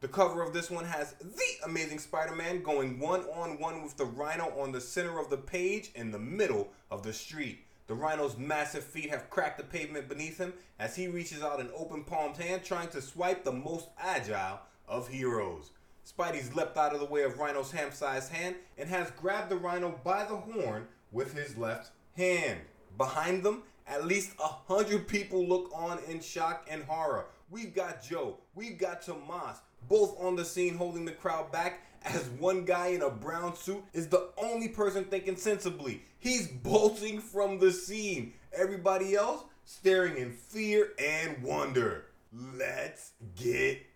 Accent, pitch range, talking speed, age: American, 150-190 Hz, 175 wpm, 30-49